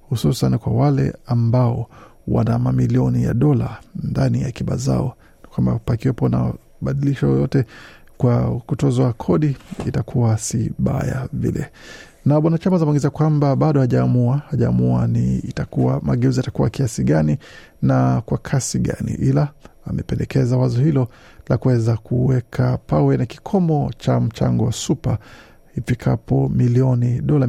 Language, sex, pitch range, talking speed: Swahili, male, 110-140 Hz, 125 wpm